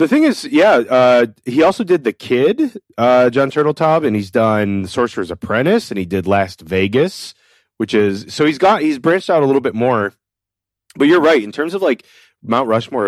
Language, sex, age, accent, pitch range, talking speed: English, male, 30-49, American, 100-140 Hz, 200 wpm